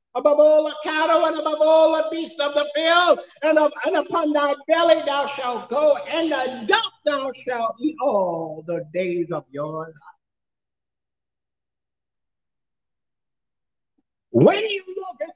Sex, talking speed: male, 140 wpm